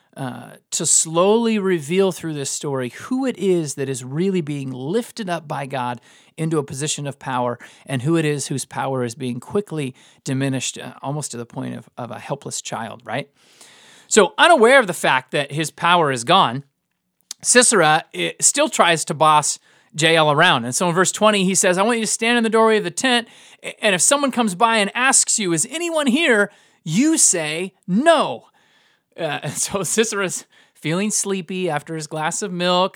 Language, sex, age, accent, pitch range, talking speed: English, male, 30-49, American, 150-220 Hz, 190 wpm